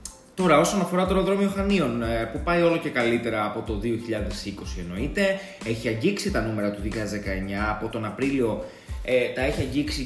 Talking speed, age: 165 wpm, 20-39